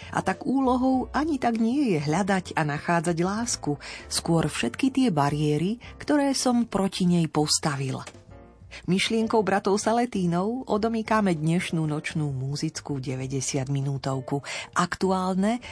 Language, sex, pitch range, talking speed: Slovak, female, 150-225 Hz, 110 wpm